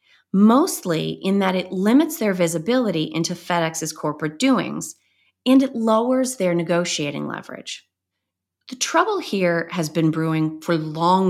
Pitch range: 160-250 Hz